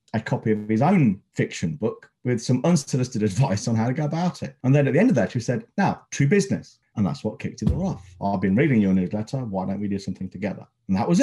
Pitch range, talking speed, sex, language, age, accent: 105-135 Hz, 260 wpm, male, English, 40-59, British